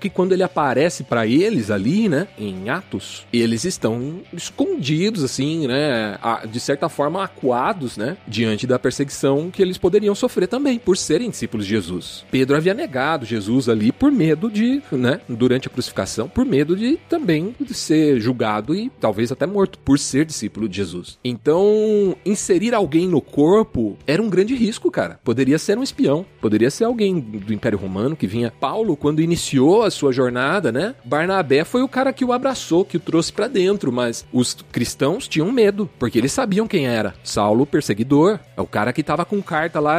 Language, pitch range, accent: Portuguese, 115-190 Hz, Brazilian